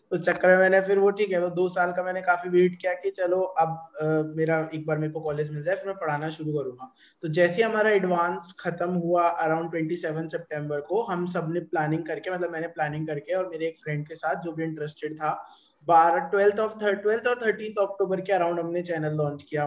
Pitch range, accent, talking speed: 165-200 Hz, native, 75 wpm